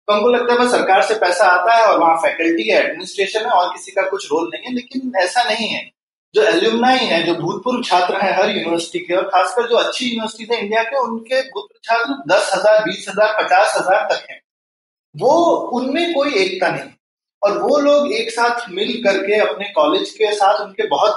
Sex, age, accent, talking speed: male, 30-49, native, 180 wpm